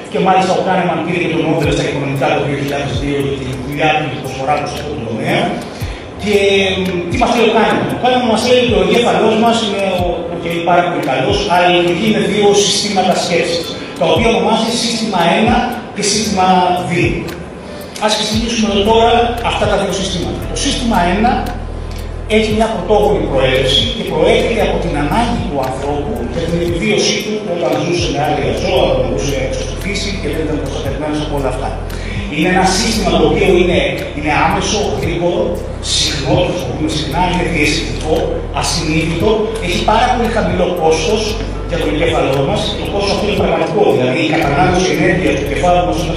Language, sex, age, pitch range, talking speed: Greek, male, 30-49, 150-205 Hz, 185 wpm